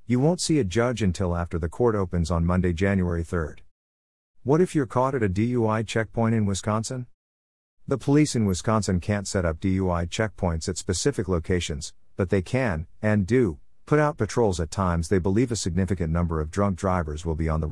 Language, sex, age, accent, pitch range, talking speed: English, male, 50-69, American, 90-115 Hz, 195 wpm